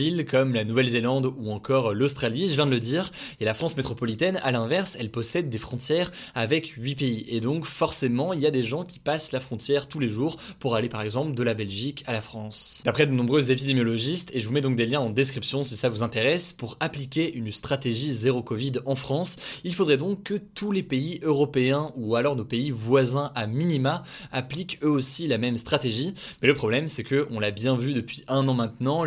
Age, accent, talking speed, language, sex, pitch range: 20-39, French, 225 wpm, French, male, 120-150 Hz